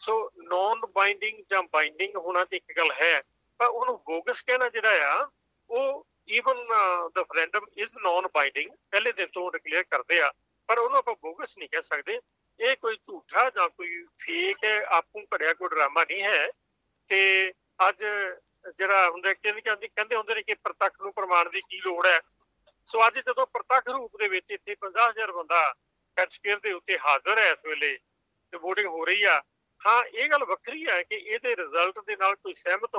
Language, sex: Urdu, male